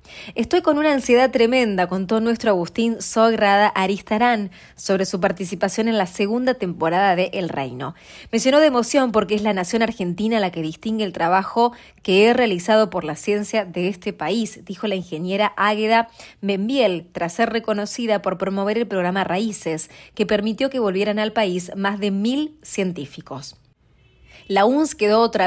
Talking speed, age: 165 wpm, 20-39